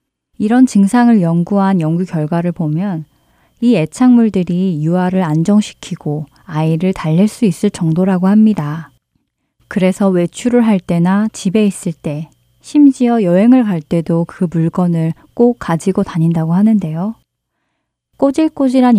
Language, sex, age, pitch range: Korean, female, 20-39, 165-220 Hz